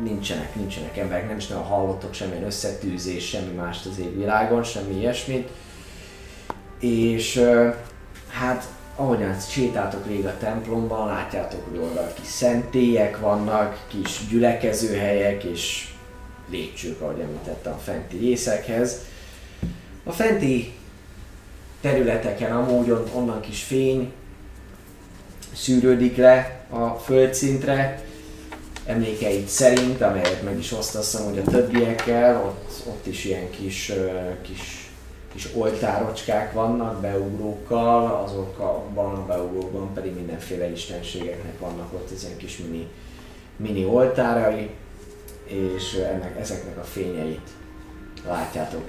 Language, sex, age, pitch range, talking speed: Hungarian, male, 20-39, 95-120 Hz, 105 wpm